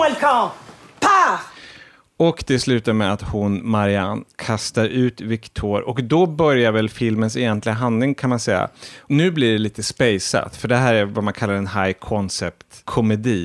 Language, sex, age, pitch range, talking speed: English, male, 30-49, 105-130 Hz, 150 wpm